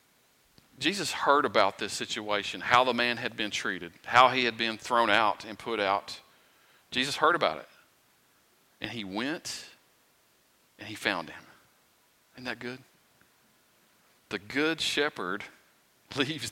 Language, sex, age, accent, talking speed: English, male, 40-59, American, 140 wpm